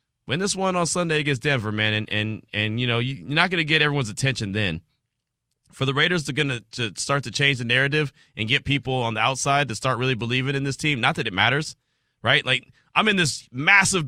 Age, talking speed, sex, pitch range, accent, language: 30-49, 235 wpm, male, 125-155 Hz, American, English